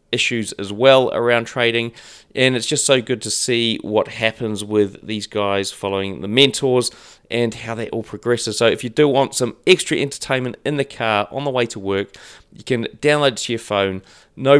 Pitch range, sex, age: 105-135 Hz, male, 30-49